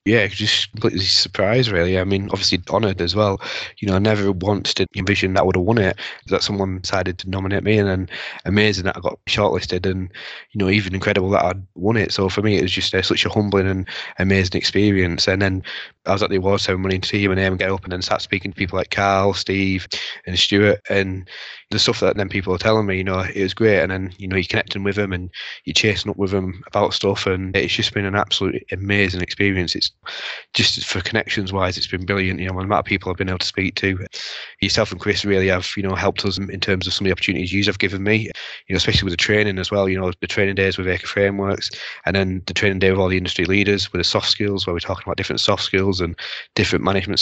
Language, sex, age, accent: English, male, 20-39, British